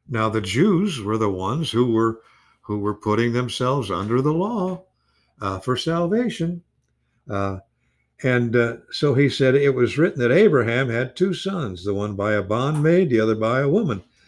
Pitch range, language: 95-140 Hz, English